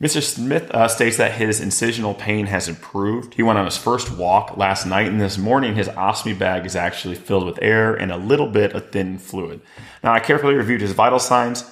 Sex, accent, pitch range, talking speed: male, American, 90-110 Hz, 220 wpm